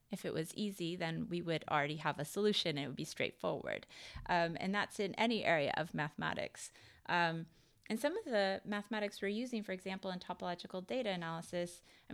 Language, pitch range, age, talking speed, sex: English, 170-215 Hz, 30-49, 195 wpm, female